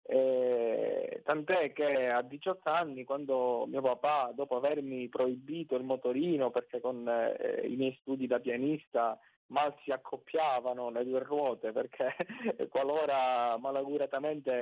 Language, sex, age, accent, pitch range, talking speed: Italian, male, 30-49, native, 125-145 Hz, 125 wpm